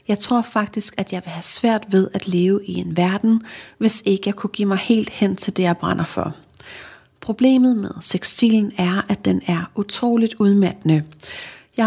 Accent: native